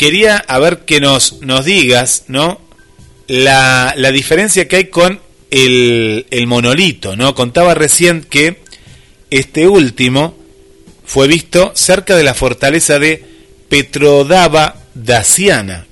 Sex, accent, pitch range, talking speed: male, Argentinian, 110-145 Hz, 120 wpm